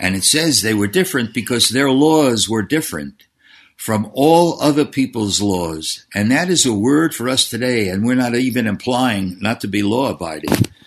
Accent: American